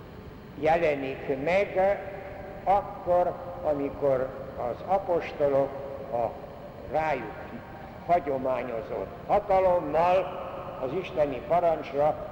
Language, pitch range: Hungarian, 145-180 Hz